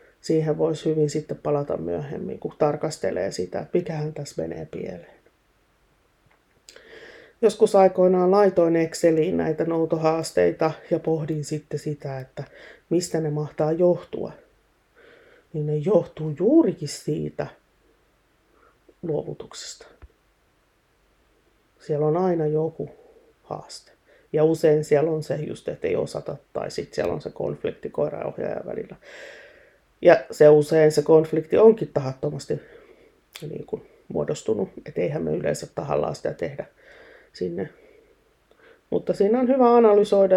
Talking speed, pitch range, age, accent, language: 115 wpm, 155-255 Hz, 30-49, native, Finnish